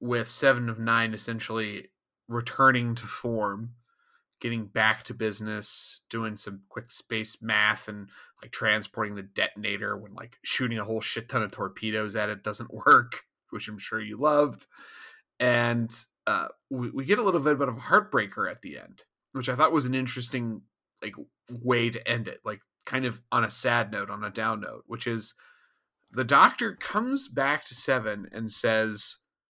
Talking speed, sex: 175 wpm, male